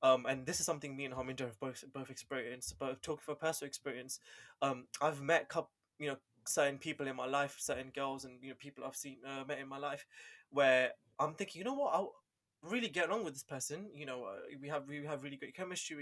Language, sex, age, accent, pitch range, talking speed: English, male, 20-39, British, 135-155 Hz, 245 wpm